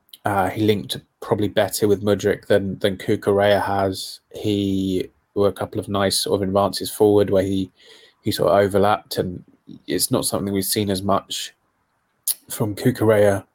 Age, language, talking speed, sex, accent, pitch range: 20-39, English, 165 wpm, male, British, 95-105 Hz